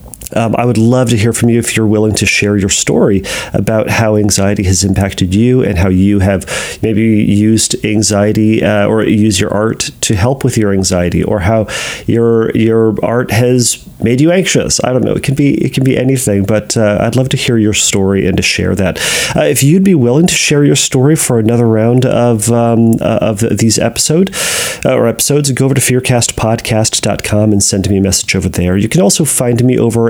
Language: English